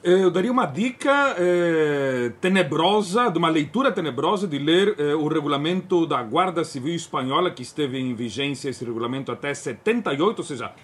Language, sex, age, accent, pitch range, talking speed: Portuguese, male, 40-59, Brazilian, 160-225 Hz, 160 wpm